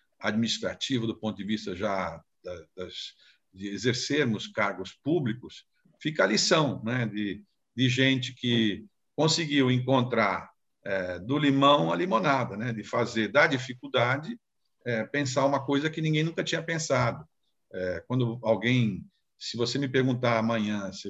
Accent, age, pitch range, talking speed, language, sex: Brazilian, 50-69, 110-140 Hz, 140 wpm, Portuguese, male